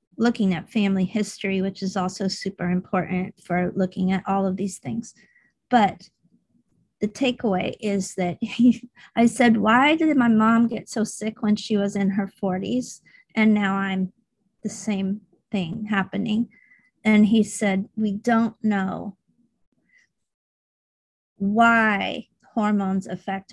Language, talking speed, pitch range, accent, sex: English, 135 wpm, 195-220 Hz, American, female